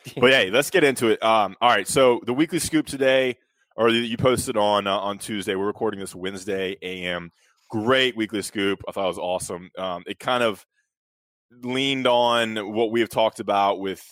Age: 20-39